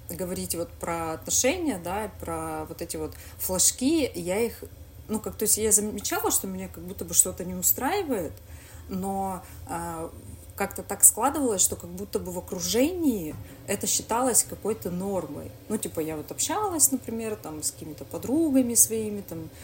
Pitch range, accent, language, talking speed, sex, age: 160-200 Hz, native, Russian, 160 wpm, female, 20-39